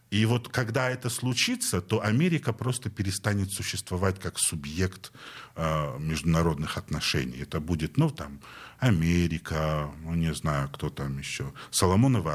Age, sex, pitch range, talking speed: 50-69, male, 90-125 Hz, 130 wpm